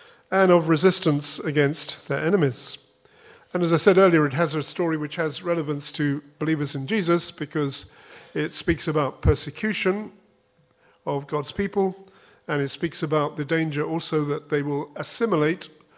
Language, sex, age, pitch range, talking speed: English, male, 40-59, 145-175 Hz, 155 wpm